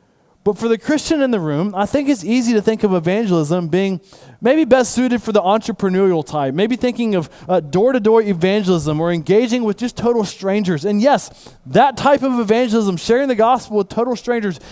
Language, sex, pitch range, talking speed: English, male, 175-230 Hz, 190 wpm